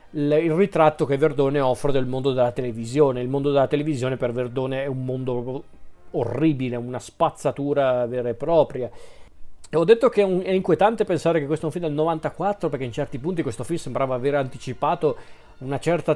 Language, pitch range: Italian, 130-155 Hz